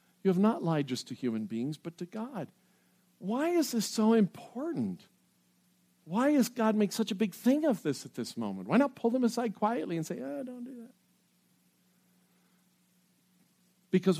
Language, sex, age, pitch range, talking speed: English, male, 50-69, 110-185 Hz, 180 wpm